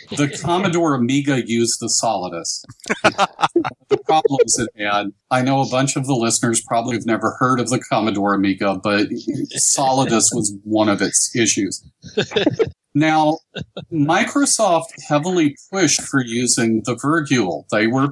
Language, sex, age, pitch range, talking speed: English, male, 40-59, 110-155 Hz, 140 wpm